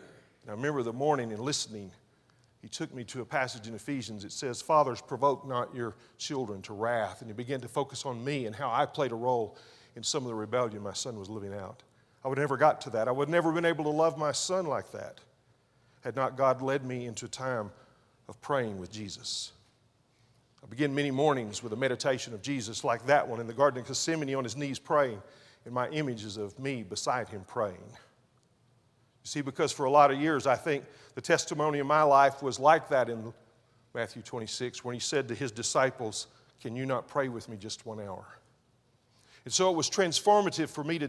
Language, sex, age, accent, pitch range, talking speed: English, male, 50-69, American, 115-145 Hz, 220 wpm